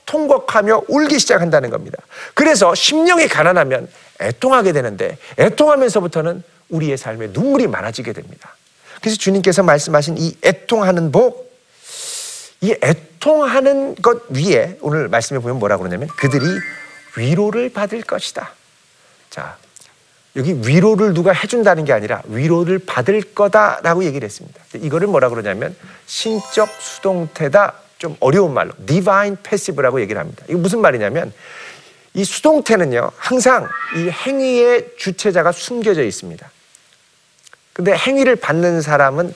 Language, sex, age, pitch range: Korean, male, 40-59, 170-260 Hz